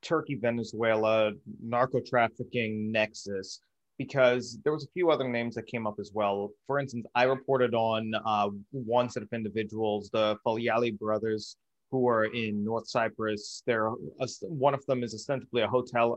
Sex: male